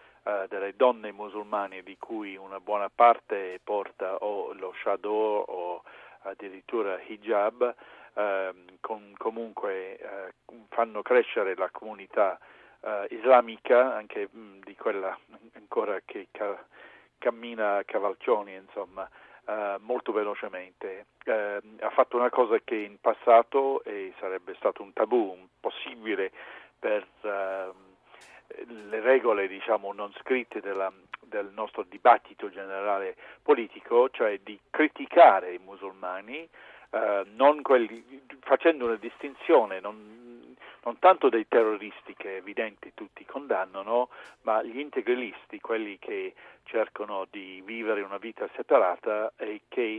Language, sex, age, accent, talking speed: Italian, male, 40-59, native, 120 wpm